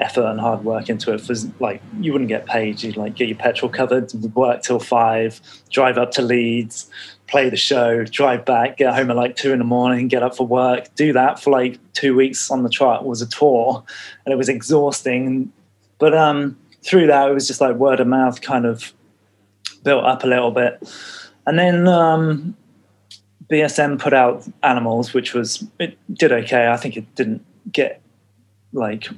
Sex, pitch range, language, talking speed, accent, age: male, 115-135 Hz, English, 195 wpm, British, 20-39